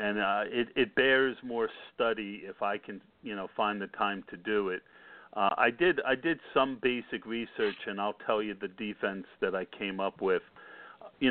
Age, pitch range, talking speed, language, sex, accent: 50-69, 105-130 Hz, 195 wpm, English, male, American